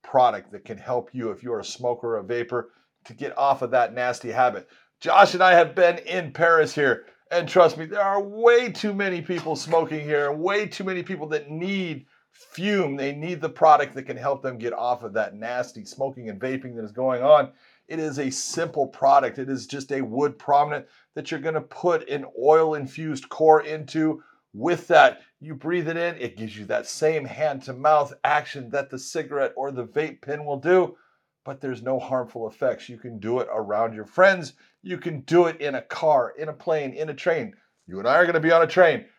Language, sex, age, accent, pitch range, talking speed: English, male, 40-59, American, 130-160 Hz, 220 wpm